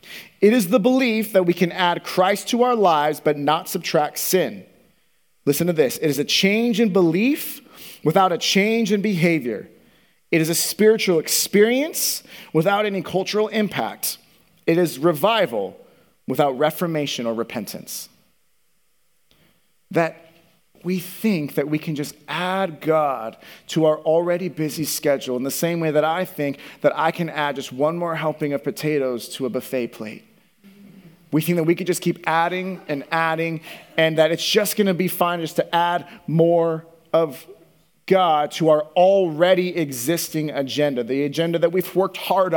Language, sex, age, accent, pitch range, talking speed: English, male, 30-49, American, 150-190 Hz, 165 wpm